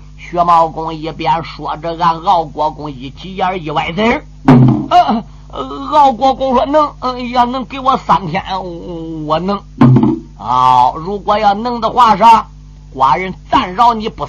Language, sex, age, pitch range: Chinese, male, 50-69, 145-225 Hz